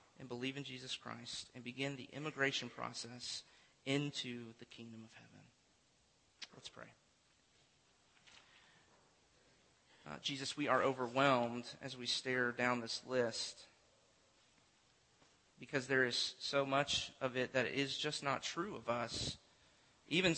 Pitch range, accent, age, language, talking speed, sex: 125-140 Hz, American, 30-49, English, 125 wpm, male